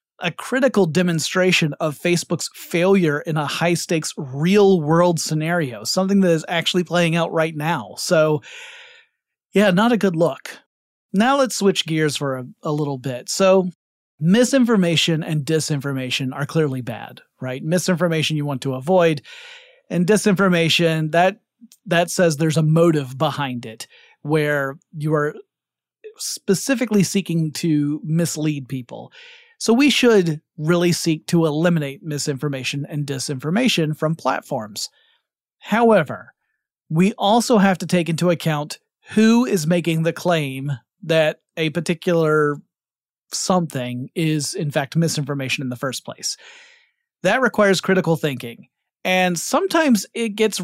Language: English